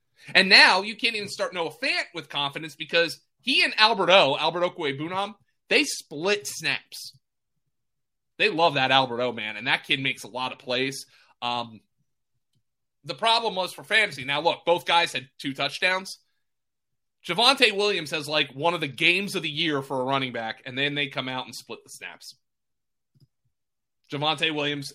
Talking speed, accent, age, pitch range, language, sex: 180 wpm, American, 30-49, 135-185 Hz, English, male